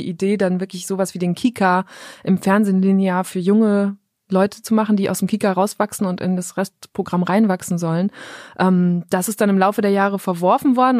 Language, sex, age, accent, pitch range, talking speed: German, female, 20-39, German, 185-215 Hz, 195 wpm